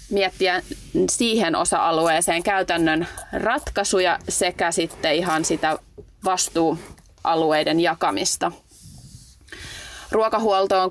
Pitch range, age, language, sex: 165-200 Hz, 30-49, Finnish, female